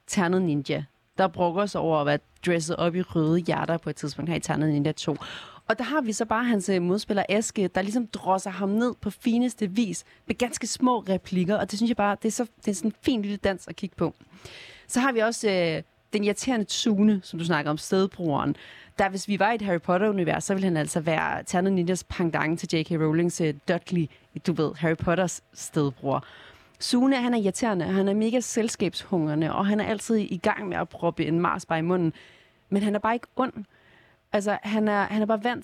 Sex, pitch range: female, 165-215 Hz